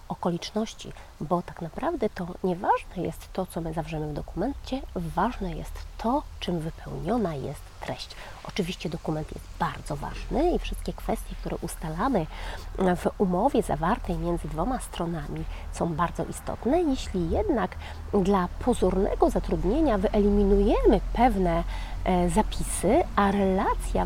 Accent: native